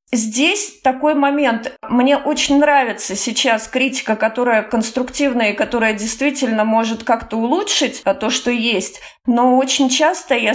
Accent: native